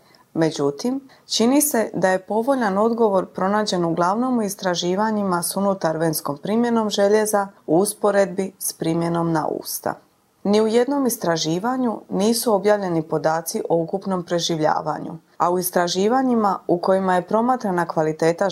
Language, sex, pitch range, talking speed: Croatian, female, 175-230 Hz, 125 wpm